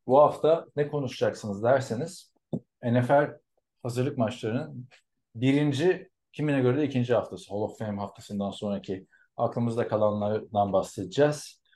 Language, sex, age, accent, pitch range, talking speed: Turkish, male, 40-59, native, 110-140 Hz, 105 wpm